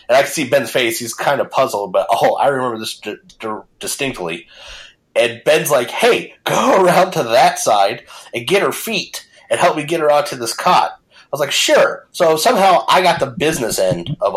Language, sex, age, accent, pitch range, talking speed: English, male, 30-49, American, 120-160 Hz, 215 wpm